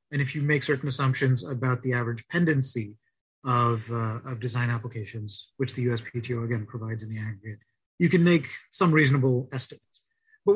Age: 30-49